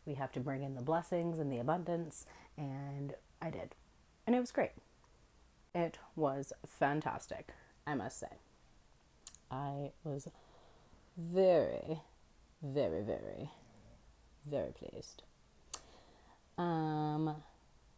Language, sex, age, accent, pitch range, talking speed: English, female, 30-49, American, 135-175 Hz, 105 wpm